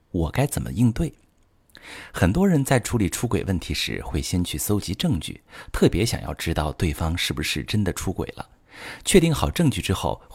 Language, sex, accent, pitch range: Chinese, male, native, 90-130 Hz